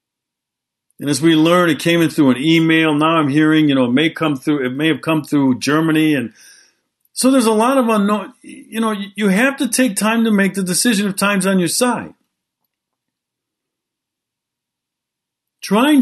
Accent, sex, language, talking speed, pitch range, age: American, male, English, 185 wpm, 165-235 Hz, 50-69